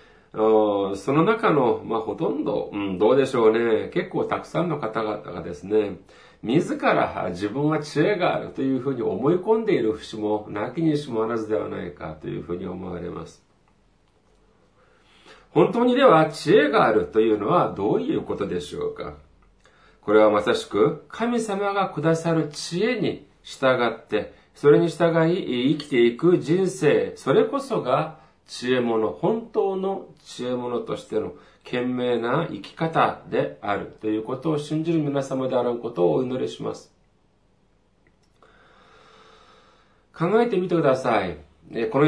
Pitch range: 110-165 Hz